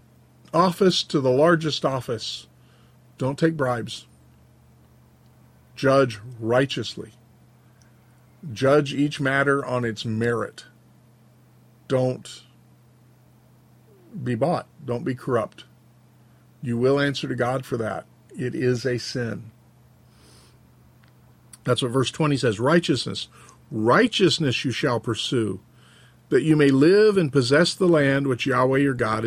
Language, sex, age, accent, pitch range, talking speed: English, male, 50-69, American, 120-140 Hz, 115 wpm